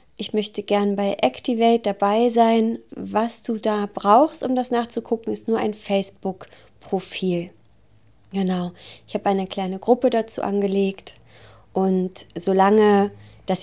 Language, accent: German, German